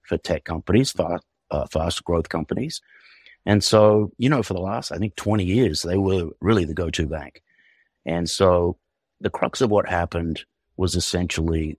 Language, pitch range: English, 85-105 Hz